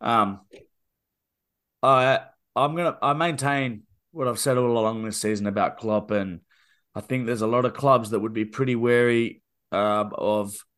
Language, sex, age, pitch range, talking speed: English, male, 30-49, 105-130 Hz, 165 wpm